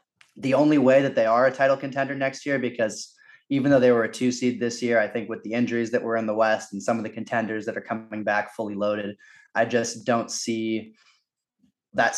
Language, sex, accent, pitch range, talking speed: English, male, American, 110-130 Hz, 230 wpm